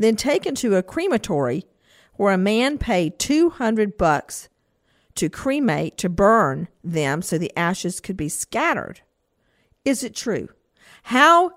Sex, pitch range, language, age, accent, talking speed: female, 170-230 Hz, English, 50-69, American, 135 wpm